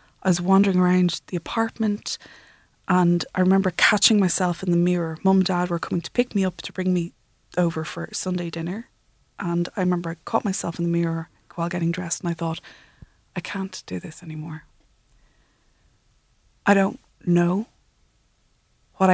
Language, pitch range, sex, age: English, 165-190 Hz, female, 20-39